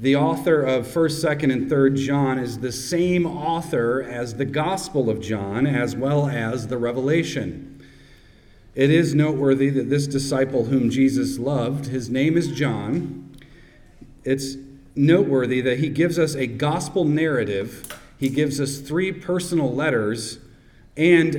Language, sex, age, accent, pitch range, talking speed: English, male, 40-59, American, 120-145 Hz, 145 wpm